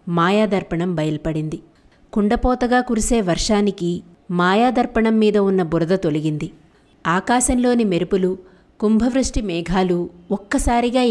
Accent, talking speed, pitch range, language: native, 80 wpm, 170-220 Hz, Telugu